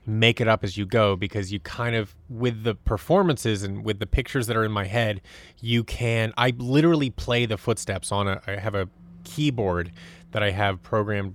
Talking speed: 205 wpm